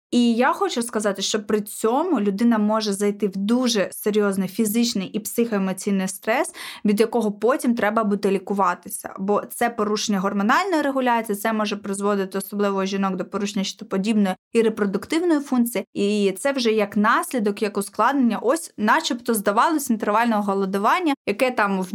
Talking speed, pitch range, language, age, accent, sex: 150 wpm, 210-260 Hz, Ukrainian, 20-39, native, female